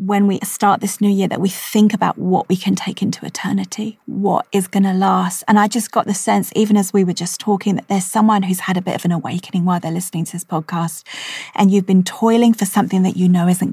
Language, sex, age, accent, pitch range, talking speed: English, female, 30-49, British, 185-215 Hz, 260 wpm